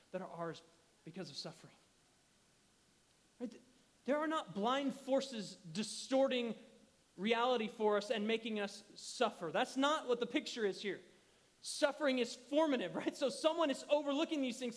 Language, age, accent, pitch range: English, 30-49, American, 190-270 Hz